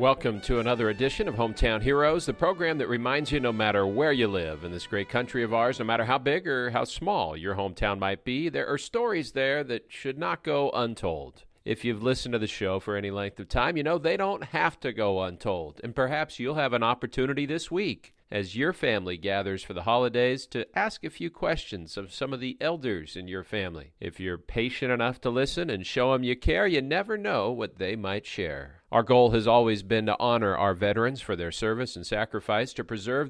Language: English